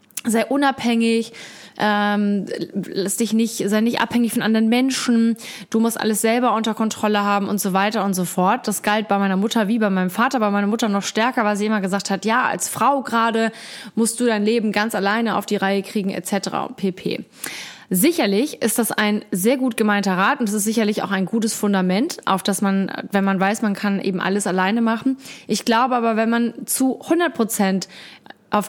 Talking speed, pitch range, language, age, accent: 205 wpm, 200-230 Hz, German, 20-39, German